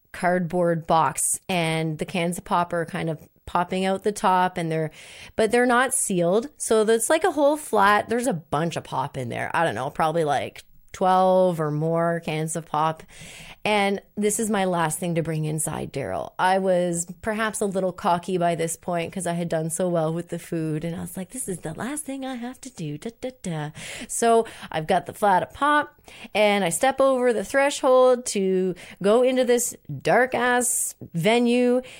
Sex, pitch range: female, 175-245 Hz